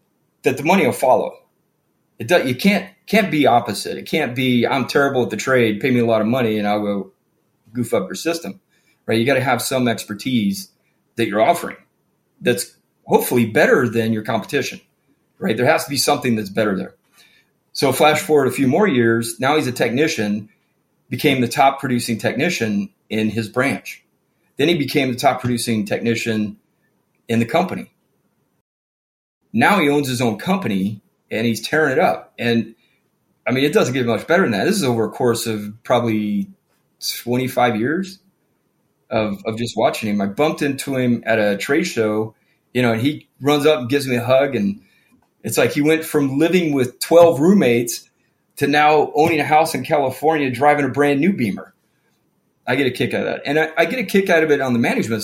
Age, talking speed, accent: 30-49, 200 wpm, American